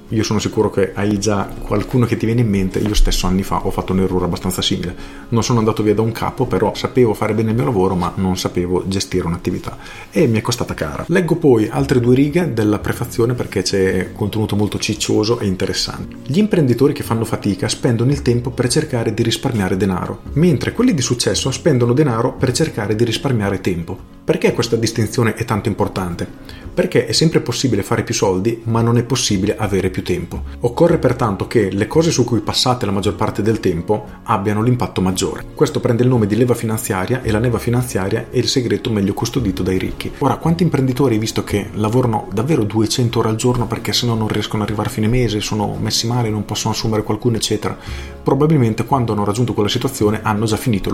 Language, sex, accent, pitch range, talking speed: Italian, male, native, 100-120 Hz, 205 wpm